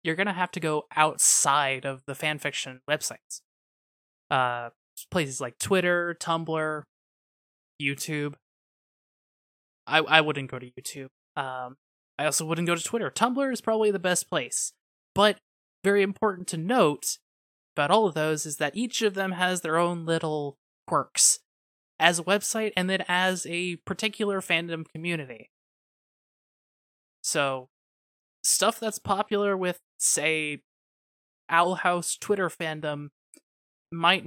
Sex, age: male, 20-39